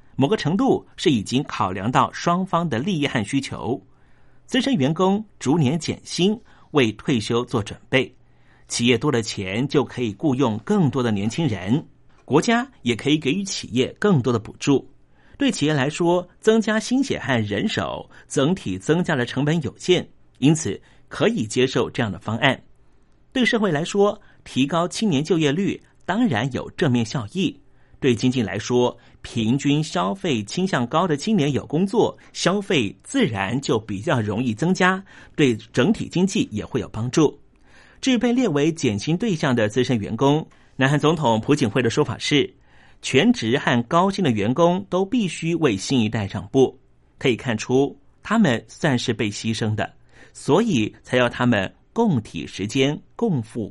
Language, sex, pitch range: Chinese, male, 120-175 Hz